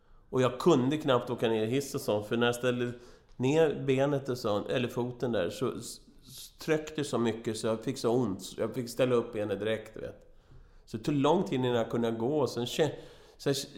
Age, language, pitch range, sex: 30-49, Swedish, 105-135 Hz, male